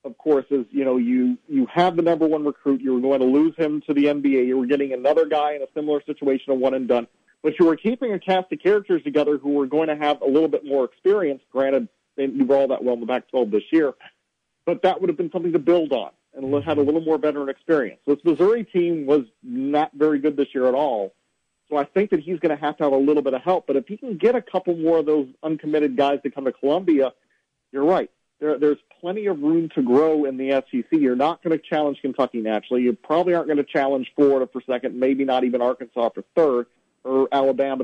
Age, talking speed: 40-59, 250 wpm